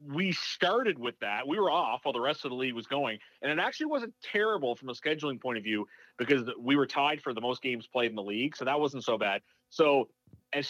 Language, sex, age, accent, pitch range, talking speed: English, male, 30-49, American, 115-145 Hz, 250 wpm